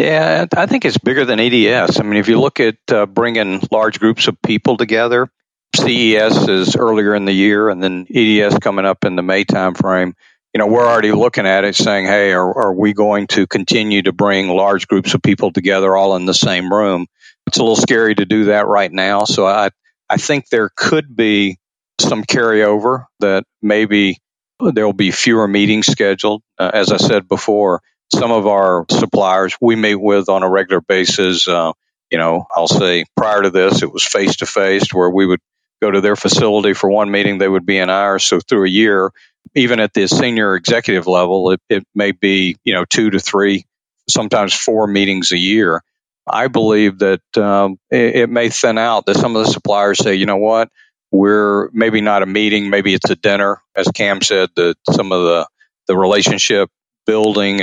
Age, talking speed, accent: 50-69, 200 wpm, American